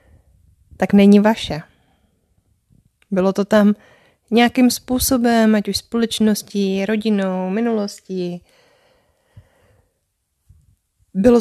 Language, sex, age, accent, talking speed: Czech, female, 20-39, native, 75 wpm